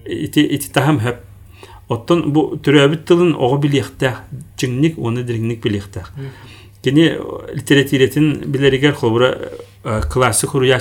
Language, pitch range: Russian, 105-145 Hz